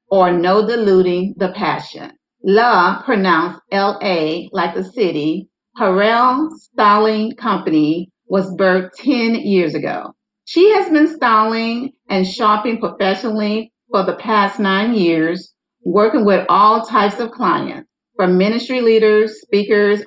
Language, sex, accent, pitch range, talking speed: English, female, American, 180-245 Hz, 125 wpm